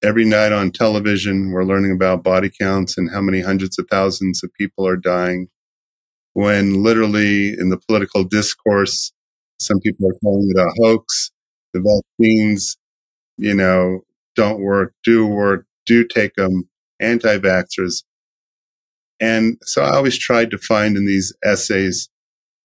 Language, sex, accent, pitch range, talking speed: English, male, American, 95-110 Hz, 145 wpm